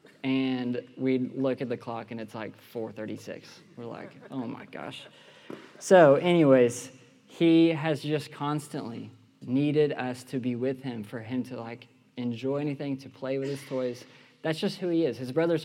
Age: 20-39